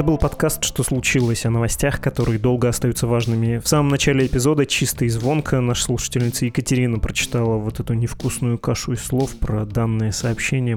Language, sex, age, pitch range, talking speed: Russian, male, 20-39, 115-130 Hz, 175 wpm